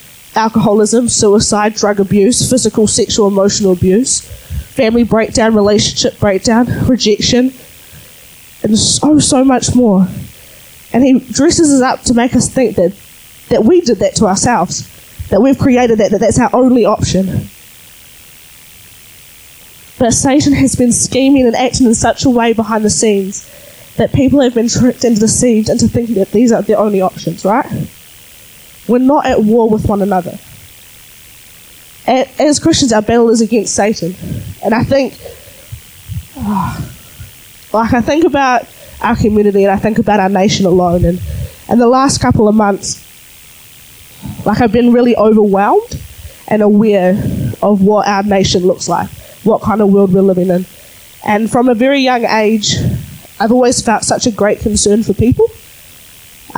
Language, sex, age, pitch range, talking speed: English, female, 20-39, 195-245 Hz, 155 wpm